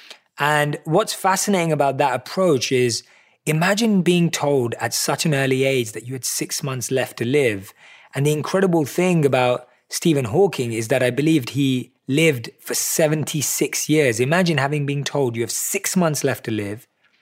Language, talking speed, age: English, 175 wpm, 20-39